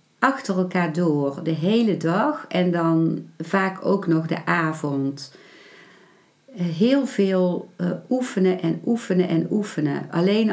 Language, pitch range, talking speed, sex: Dutch, 160-190 Hz, 125 wpm, female